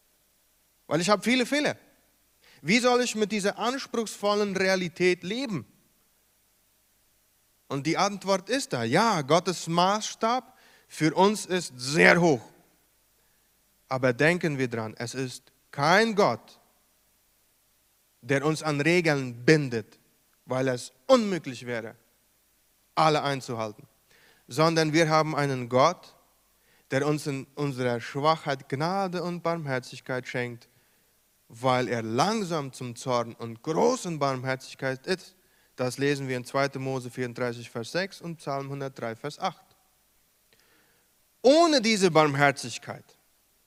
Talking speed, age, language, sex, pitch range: 115 wpm, 30-49, Spanish, male, 125-180 Hz